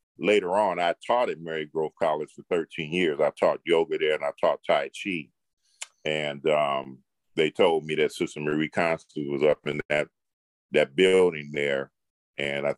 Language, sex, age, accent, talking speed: English, male, 40-59, American, 180 wpm